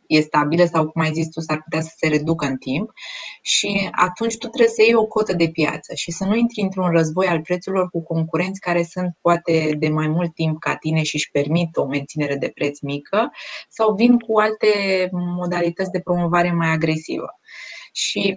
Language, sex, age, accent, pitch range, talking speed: Romanian, female, 20-39, native, 155-200 Hz, 200 wpm